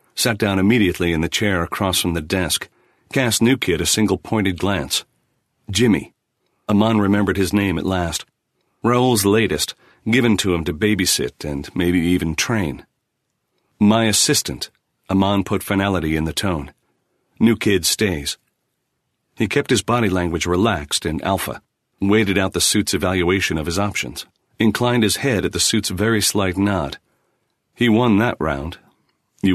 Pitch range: 90-110 Hz